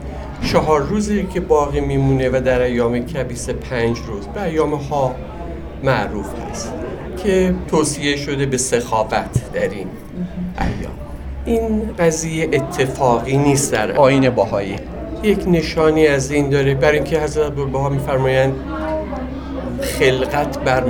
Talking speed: 120 wpm